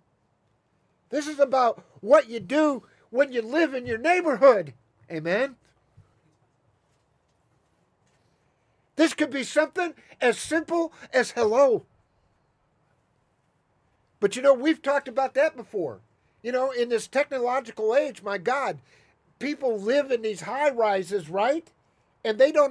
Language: English